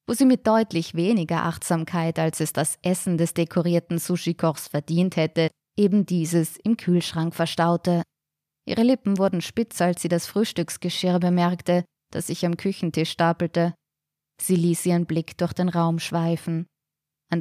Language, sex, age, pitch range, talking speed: German, female, 20-39, 165-185 Hz, 150 wpm